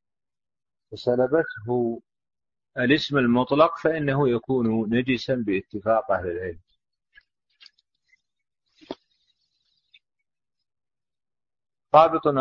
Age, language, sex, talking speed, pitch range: 40-59, Arabic, male, 50 wpm, 110-140 Hz